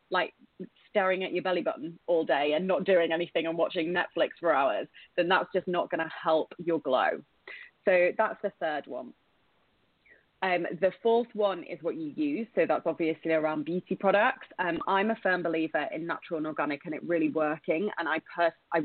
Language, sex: English, female